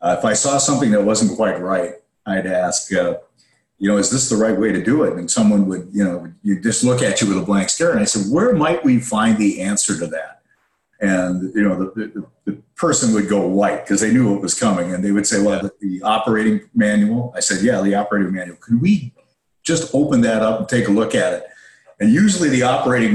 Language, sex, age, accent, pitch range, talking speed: English, male, 50-69, American, 95-120 Hz, 240 wpm